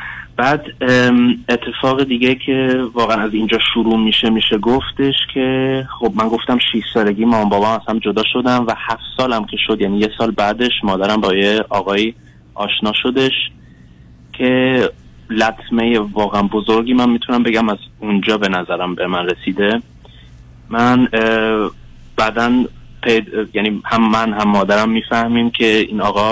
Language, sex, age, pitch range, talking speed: Persian, male, 30-49, 100-120 Hz, 140 wpm